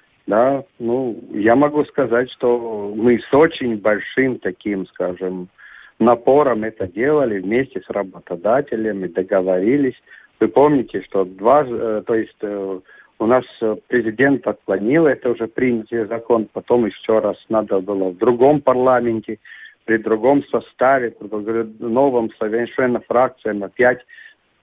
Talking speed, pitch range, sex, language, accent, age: 120 wpm, 105-135 Hz, male, Russian, native, 50-69